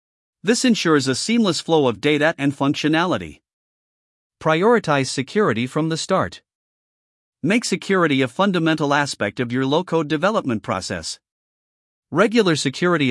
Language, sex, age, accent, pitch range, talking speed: English, male, 50-69, American, 125-175 Hz, 120 wpm